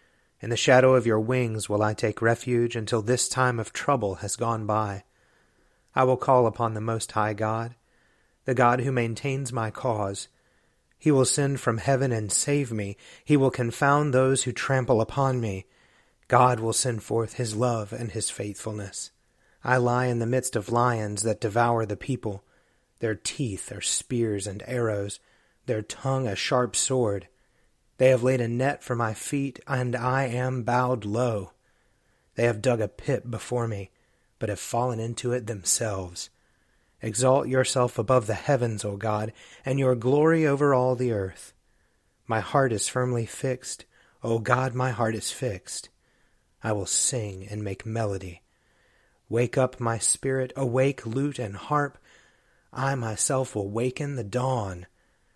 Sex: male